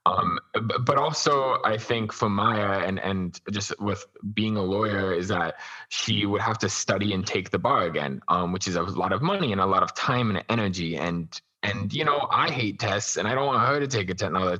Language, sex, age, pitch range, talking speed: English, male, 20-39, 95-110 Hz, 225 wpm